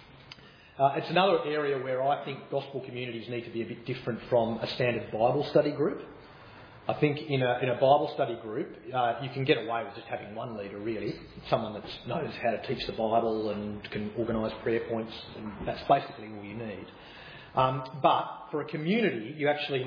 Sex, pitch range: male, 115-140 Hz